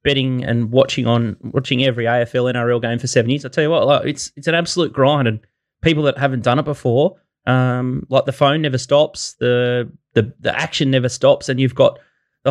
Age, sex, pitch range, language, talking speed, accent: 20-39, male, 125-145 Hz, English, 215 wpm, Australian